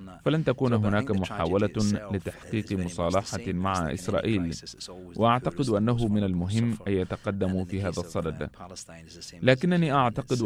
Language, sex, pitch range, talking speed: Arabic, male, 95-120 Hz, 110 wpm